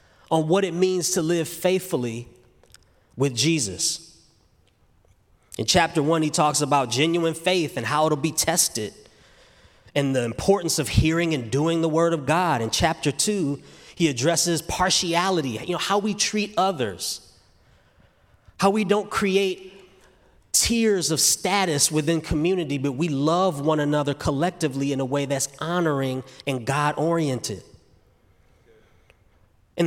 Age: 30-49